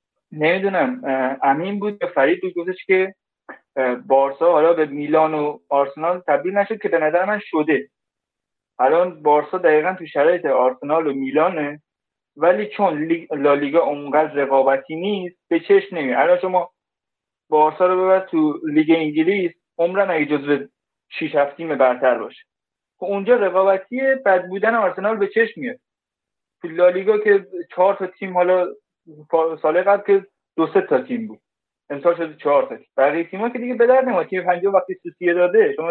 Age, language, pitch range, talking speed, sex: 50-69, Persian, 155-200 Hz, 150 wpm, male